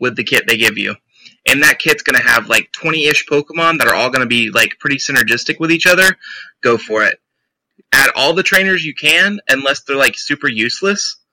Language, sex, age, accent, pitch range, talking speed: English, male, 20-39, American, 130-165 Hz, 215 wpm